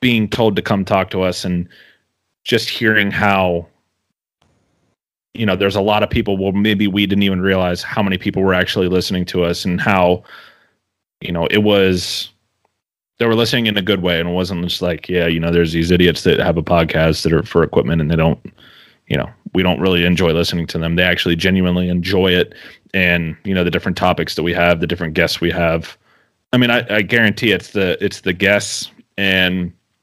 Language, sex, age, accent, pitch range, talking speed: English, male, 30-49, American, 85-100 Hz, 210 wpm